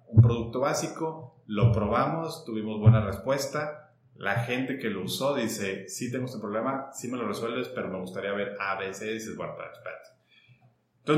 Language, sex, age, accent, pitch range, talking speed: Spanish, male, 30-49, Mexican, 105-135 Hz, 150 wpm